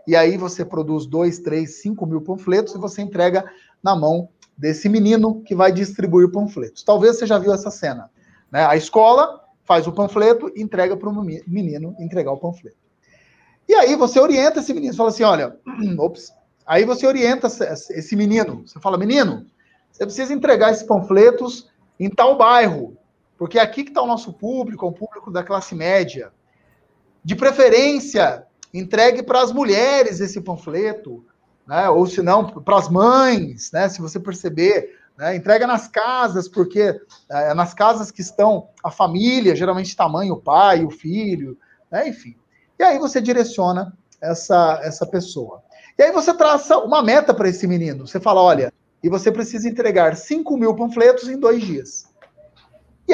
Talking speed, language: 170 wpm, Portuguese